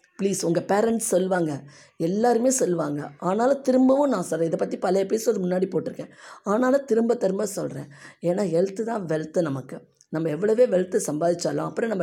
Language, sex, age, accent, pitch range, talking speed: Tamil, female, 20-39, native, 145-215 Hz, 155 wpm